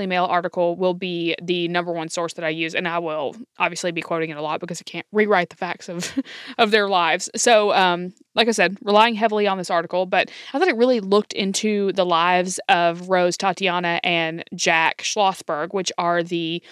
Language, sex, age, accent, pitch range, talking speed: English, female, 20-39, American, 175-220 Hz, 210 wpm